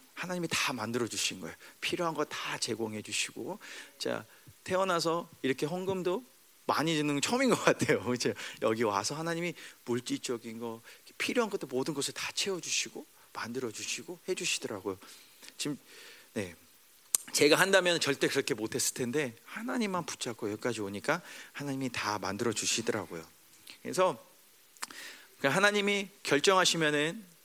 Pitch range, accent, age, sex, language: 125-200 Hz, native, 40-59, male, Korean